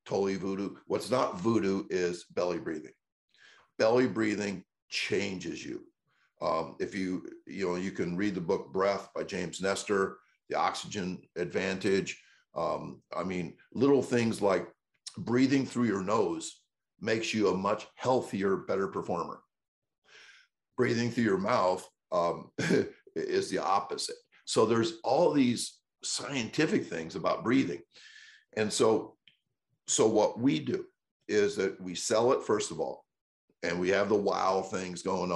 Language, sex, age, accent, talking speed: English, male, 50-69, American, 140 wpm